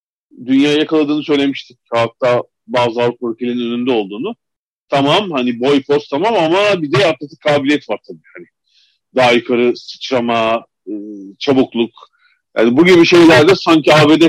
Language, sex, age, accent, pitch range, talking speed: Turkish, male, 50-69, native, 120-170 Hz, 135 wpm